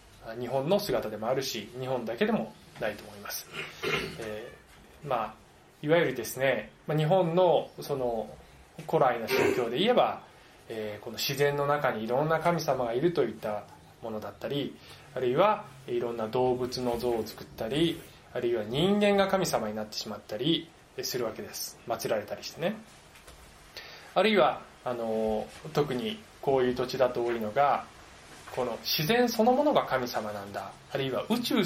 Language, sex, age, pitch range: Japanese, male, 20-39, 115-185 Hz